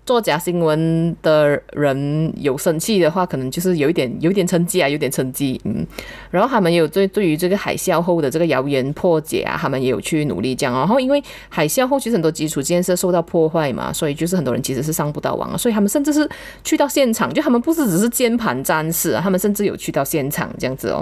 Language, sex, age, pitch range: Chinese, female, 30-49, 150-205 Hz